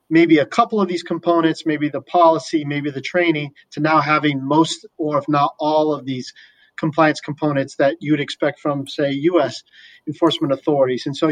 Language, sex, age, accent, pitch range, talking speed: English, male, 40-59, American, 140-165 Hz, 185 wpm